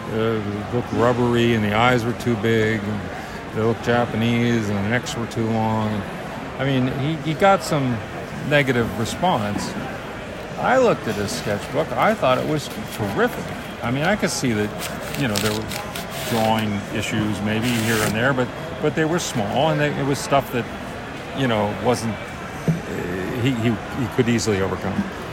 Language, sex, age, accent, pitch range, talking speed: English, male, 50-69, American, 110-135 Hz, 175 wpm